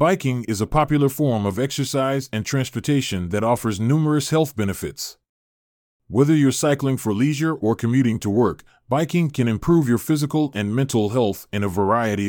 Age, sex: 30-49, male